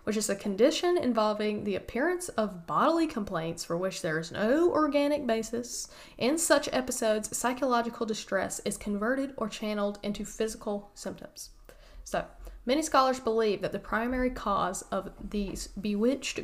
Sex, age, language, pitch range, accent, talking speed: female, 10-29, English, 195-240 Hz, American, 145 wpm